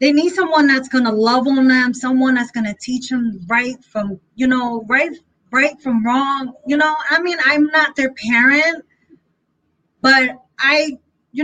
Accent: American